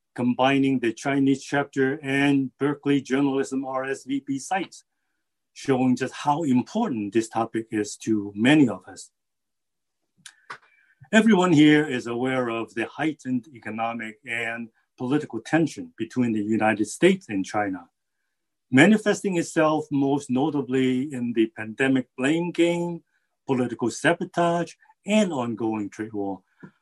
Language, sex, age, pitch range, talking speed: English, male, 50-69, 115-155 Hz, 115 wpm